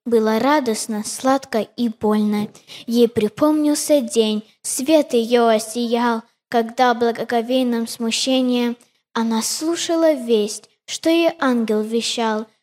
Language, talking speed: Russian, 100 wpm